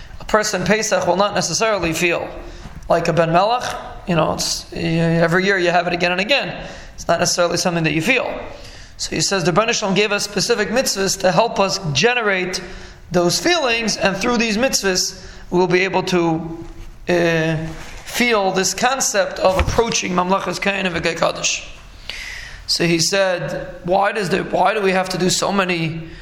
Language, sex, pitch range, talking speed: English, male, 170-200 Hz, 170 wpm